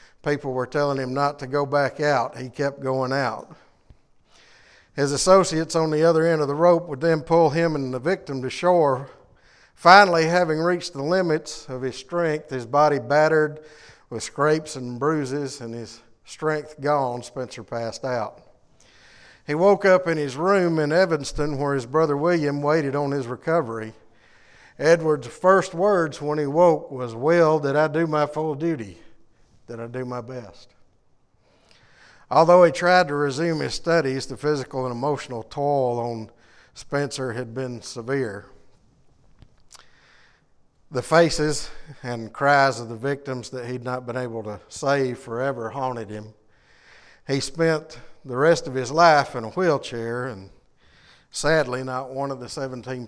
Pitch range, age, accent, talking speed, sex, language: 120-155 Hz, 50-69, American, 155 wpm, male, English